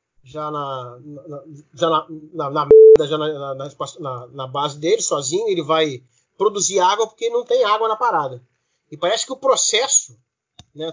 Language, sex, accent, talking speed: Portuguese, male, Brazilian, 115 wpm